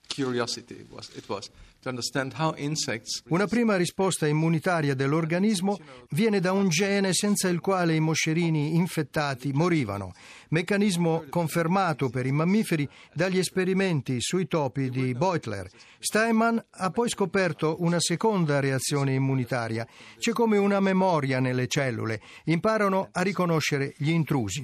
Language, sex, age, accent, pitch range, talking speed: Italian, male, 50-69, native, 135-185 Hz, 110 wpm